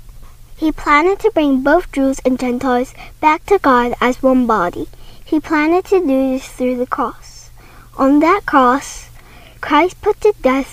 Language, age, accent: Korean, 10-29, American